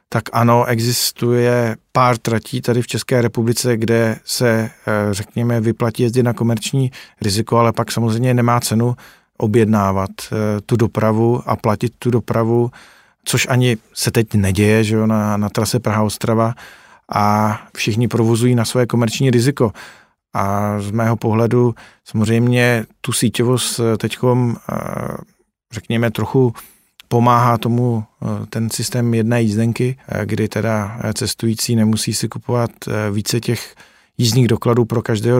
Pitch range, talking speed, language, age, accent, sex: 110-120 Hz, 130 wpm, Czech, 40-59, native, male